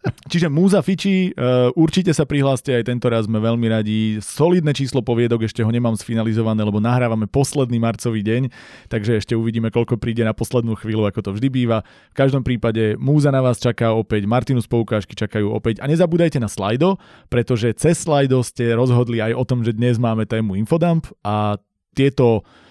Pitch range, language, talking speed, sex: 105-125 Hz, Slovak, 175 wpm, male